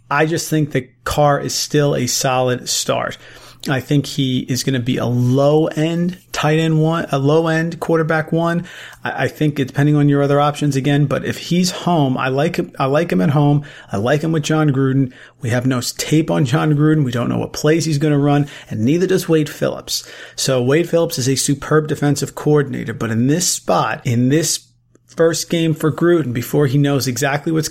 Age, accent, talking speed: 40-59, American, 205 wpm